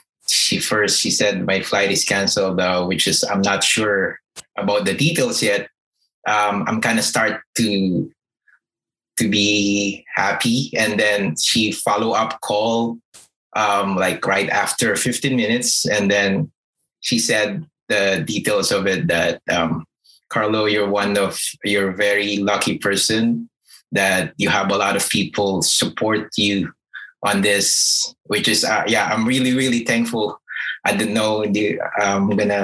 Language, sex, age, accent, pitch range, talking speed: Filipino, male, 20-39, native, 100-115 Hz, 150 wpm